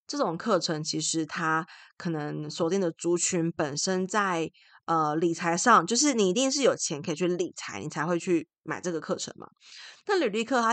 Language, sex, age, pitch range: Chinese, female, 20-39, 160-190 Hz